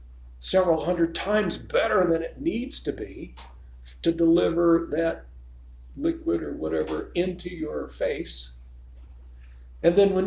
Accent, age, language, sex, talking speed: American, 60-79, English, male, 125 wpm